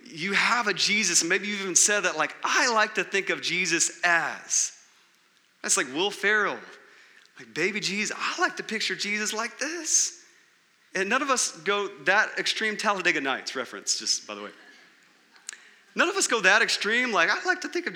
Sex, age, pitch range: male, 30-49, 140-215 Hz